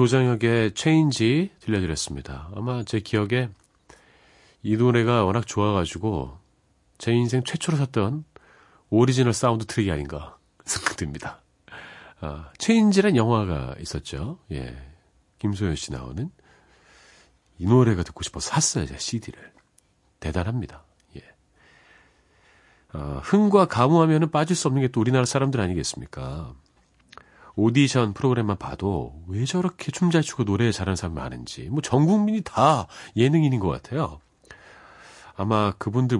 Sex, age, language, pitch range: male, 40-59, Korean, 90-140 Hz